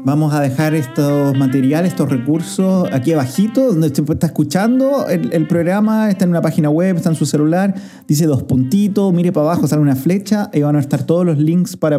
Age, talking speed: 30-49, 205 wpm